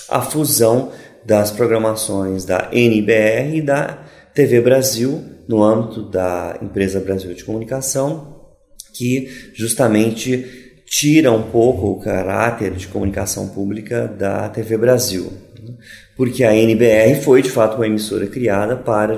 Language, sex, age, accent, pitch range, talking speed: Portuguese, male, 30-49, Brazilian, 105-130 Hz, 125 wpm